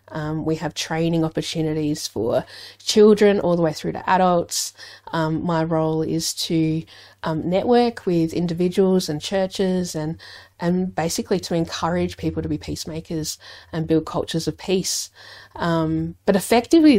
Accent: Australian